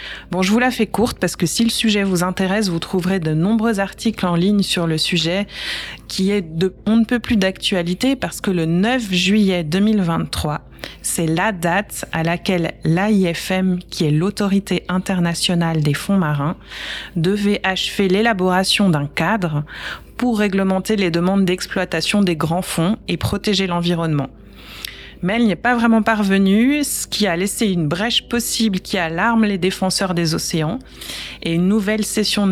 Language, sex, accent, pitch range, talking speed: French, female, French, 170-205 Hz, 165 wpm